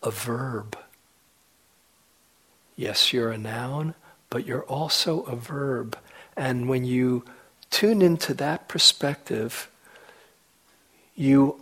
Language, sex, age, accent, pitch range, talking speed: English, male, 50-69, American, 120-155 Hz, 100 wpm